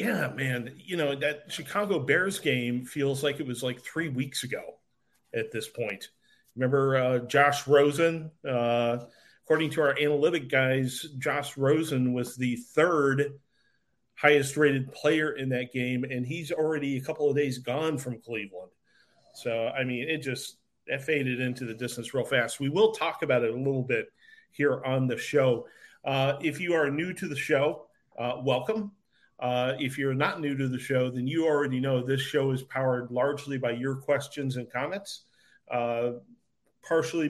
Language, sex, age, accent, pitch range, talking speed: English, male, 40-59, American, 125-150 Hz, 170 wpm